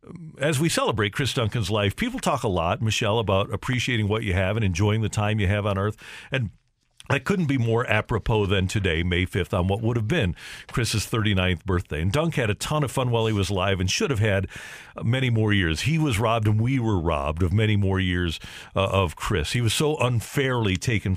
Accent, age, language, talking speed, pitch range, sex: American, 50-69, English, 225 wpm, 105-135 Hz, male